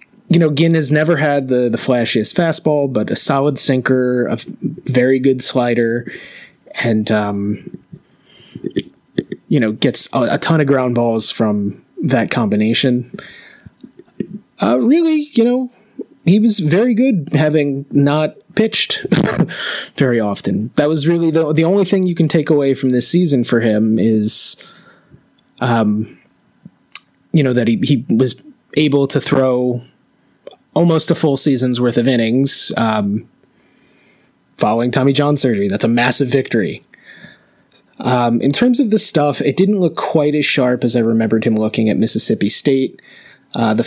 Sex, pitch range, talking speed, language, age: male, 115-150 Hz, 150 wpm, English, 20-39